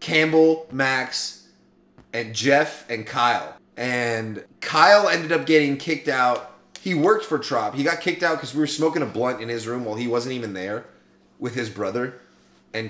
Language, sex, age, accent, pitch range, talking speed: English, male, 30-49, American, 110-155 Hz, 180 wpm